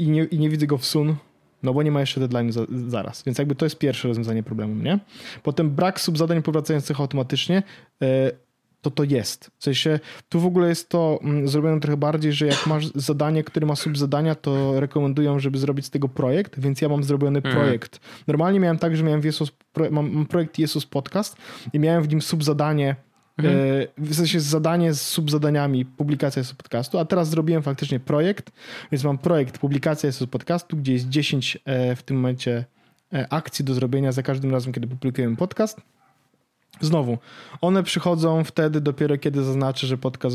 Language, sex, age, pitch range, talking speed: Polish, male, 20-39, 135-160 Hz, 180 wpm